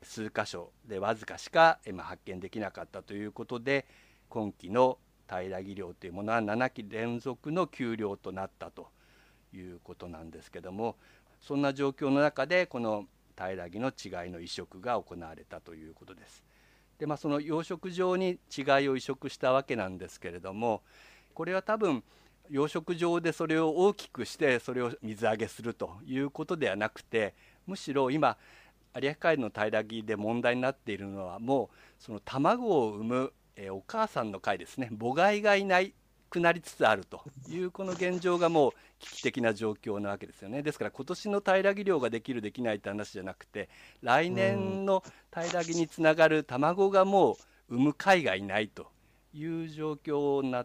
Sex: male